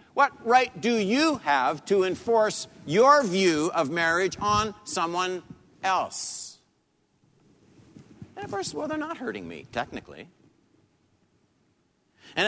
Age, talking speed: 50-69, 115 wpm